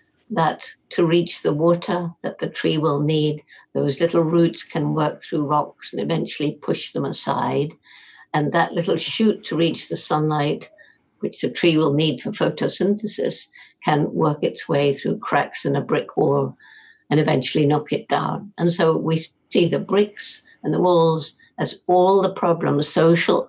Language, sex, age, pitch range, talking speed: English, female, 60-79, 150-180 Hz, 170 wpm